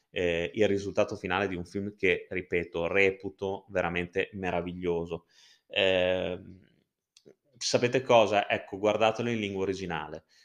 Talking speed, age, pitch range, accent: 115 wpm, 20-39, 95-110 Hz, native